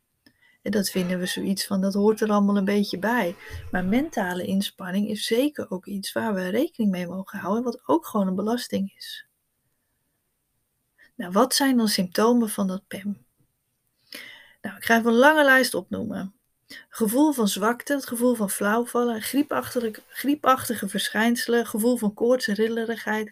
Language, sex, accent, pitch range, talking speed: Dutch, female, Dutch, 205-245 Hz, 160 wpm